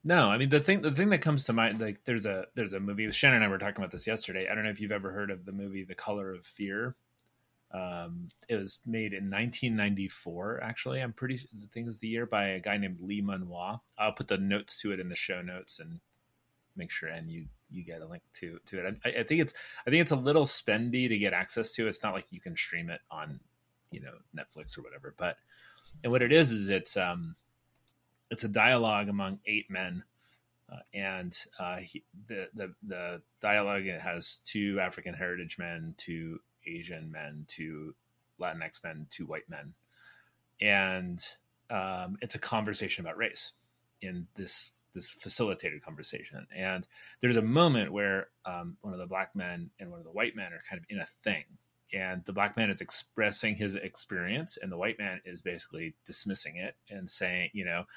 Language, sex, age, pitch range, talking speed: English, male, 30-49, 90-115 Hz, 210 wpm